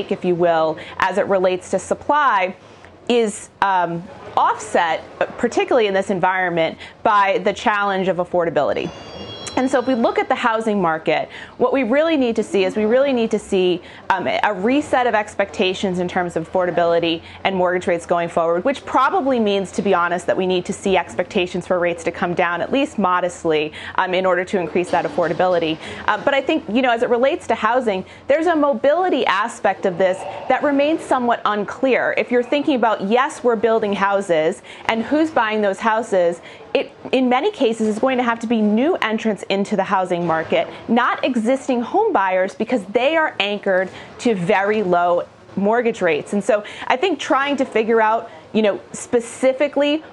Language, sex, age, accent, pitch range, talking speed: English, female, 30-49, American, 185-240 Hz, 185 wpm